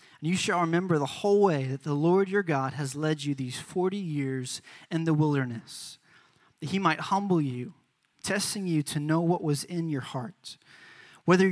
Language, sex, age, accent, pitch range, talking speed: English, male, 20-39, American, 145-180 Hz, 190 wpm